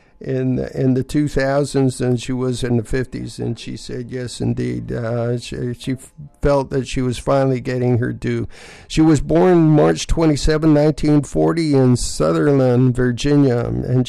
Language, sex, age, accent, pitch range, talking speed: English, male, 50-69, American, 120-150 Hz, 155 wpm